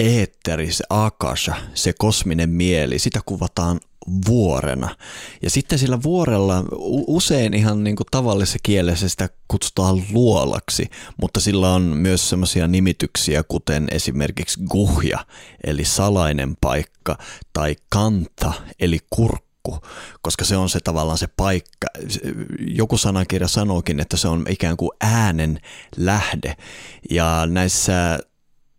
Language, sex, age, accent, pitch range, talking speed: Finnish, male, 30-49, native, 80-100 Hz, 120 wpm